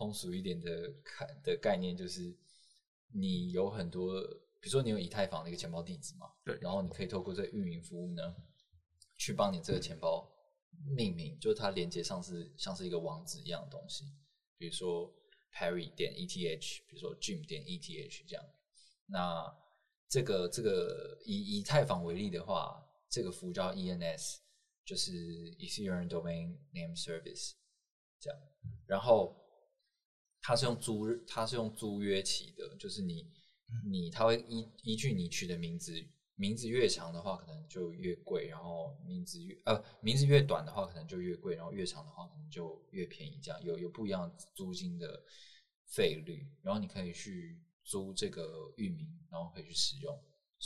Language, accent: Chinese, native